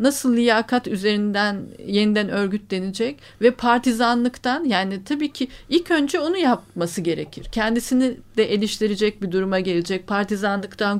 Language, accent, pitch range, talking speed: Turkish, native, 215-275 Hz, 120 wpm